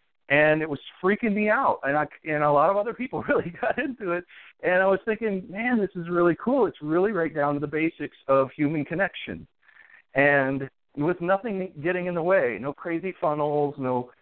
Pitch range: 135-180 Hz